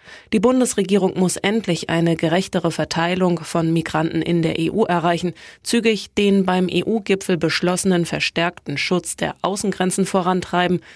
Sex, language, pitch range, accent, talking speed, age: female, German, 170-205 Hz, German, 125 wpm, 20-39